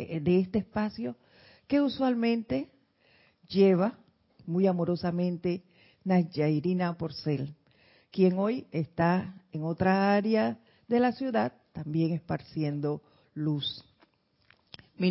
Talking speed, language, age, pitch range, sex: 90 wpm, Spanish, 50-69, 160-210 Hz, female